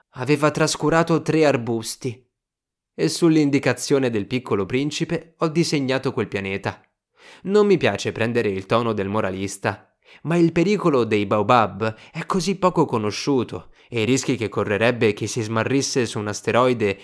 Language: Italian